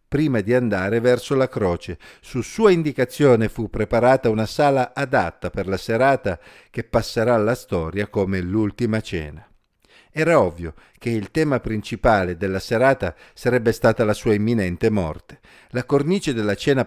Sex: male